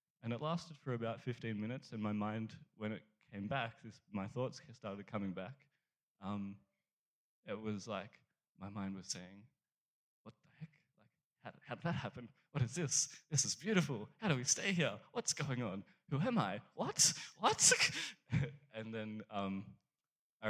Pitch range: 100-135 Hz